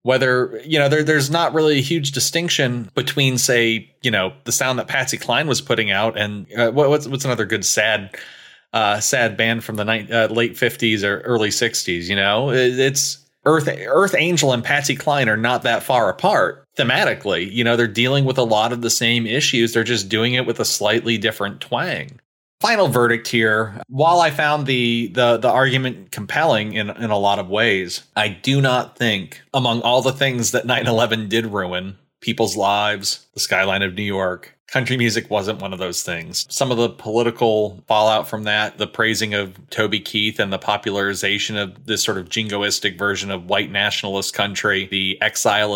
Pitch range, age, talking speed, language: 105-130 Hz, 30-49, 195 wpm, English